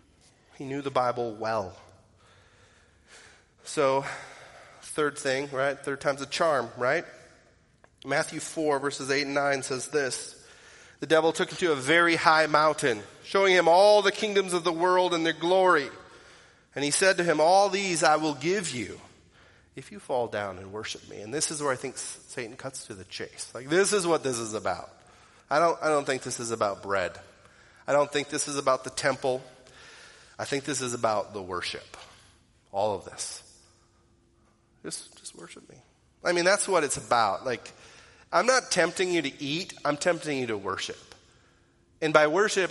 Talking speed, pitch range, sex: 185 wpm, 130-165 Hz, male